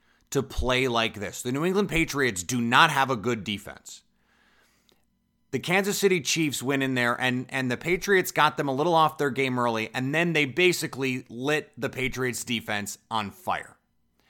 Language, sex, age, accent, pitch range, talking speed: English, male, 30-49, American, 110-145 Hz, 180 wpm